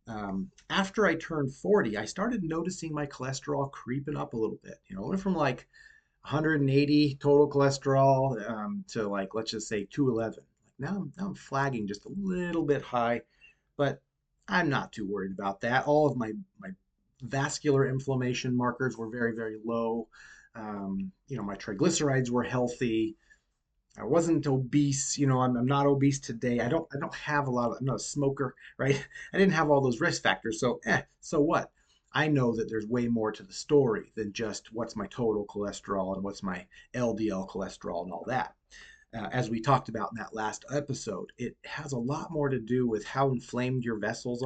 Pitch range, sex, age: 115-145 Hz, male, 30-49